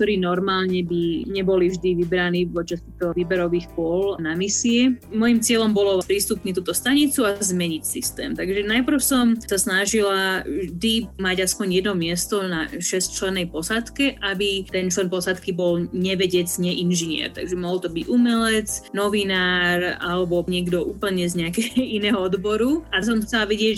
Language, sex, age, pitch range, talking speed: Slovak, female, 20-39, 180-215 Hz, 145 wpm